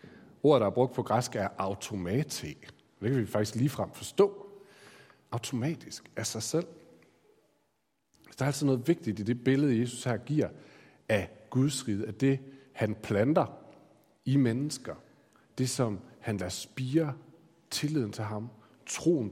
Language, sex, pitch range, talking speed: Danish, male, 110-140 Hz, 145 wpm